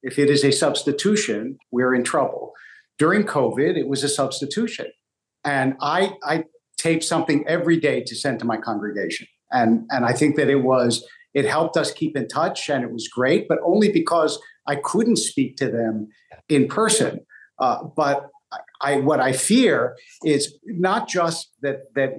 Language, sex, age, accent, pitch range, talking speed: English, male, 50-69, American, 130-180 Hz, 175 wpm